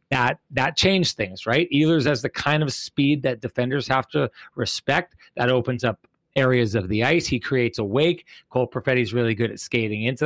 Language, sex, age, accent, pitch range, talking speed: English, male, 30-49, American, 125-150 Hz, 200 wpm